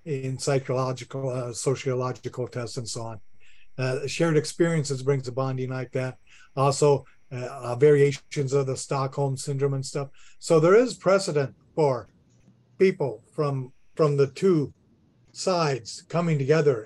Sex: male